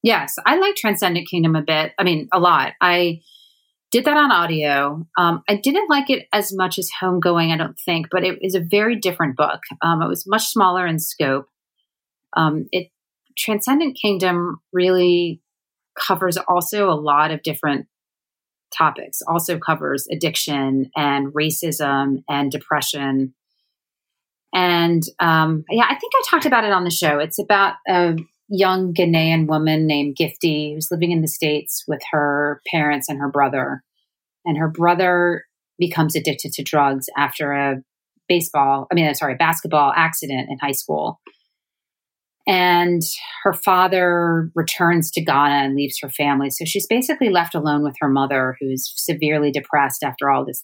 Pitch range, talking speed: 145-185 Hz, 160 wpm